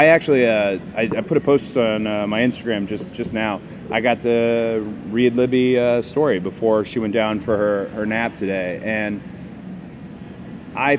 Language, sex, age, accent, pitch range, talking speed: English, male, 30-49, American, 110-125 Hz, 180 wpm